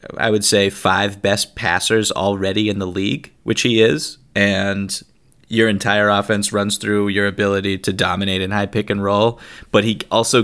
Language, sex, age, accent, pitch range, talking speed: English, male, 30-49, American, 95-115 Hz, 180 wpm